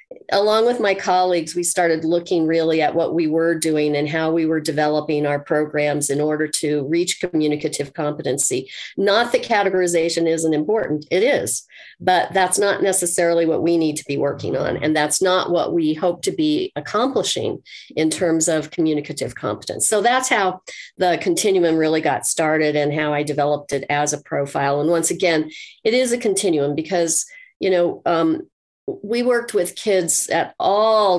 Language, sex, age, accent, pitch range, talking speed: English, female, 40-59, American, 160-195 Hz, 175 wpm